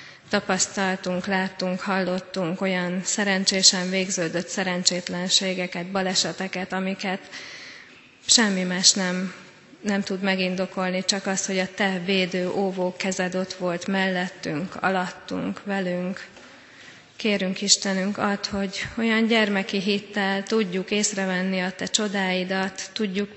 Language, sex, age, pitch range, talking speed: Hungarian, female, 30-49, 185-200 Hz, 105 wpm